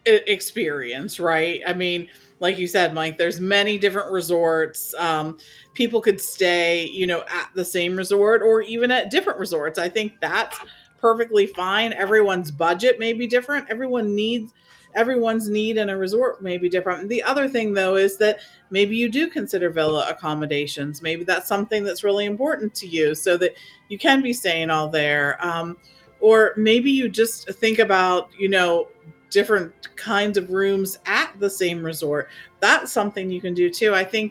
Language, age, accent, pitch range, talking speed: English, 40-59, American, 170-215 Hz, 175 wpm